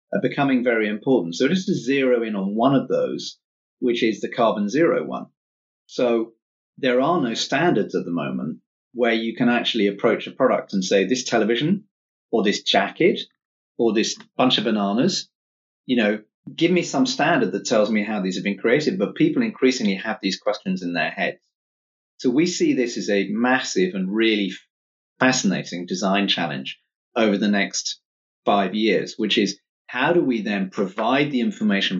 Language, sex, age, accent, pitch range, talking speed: English, male, 40-59, British, 100-135 Hz, 180 wpm